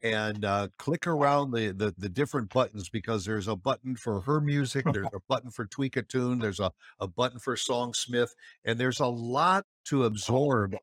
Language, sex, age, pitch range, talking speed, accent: English, male, 60-79, 110-150 Hz, 200 wpm, American